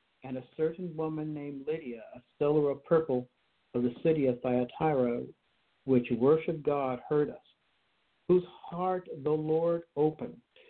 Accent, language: American, English